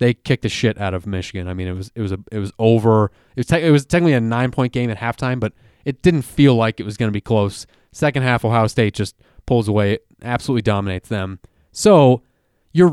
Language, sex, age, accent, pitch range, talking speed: English, male, 20-39, American, 115-155 Hz, 240 wpm